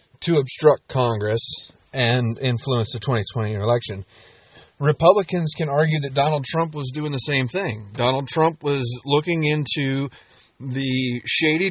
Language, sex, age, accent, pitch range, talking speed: English, male, 30-49, American, 120-145 Hz, 135 wpm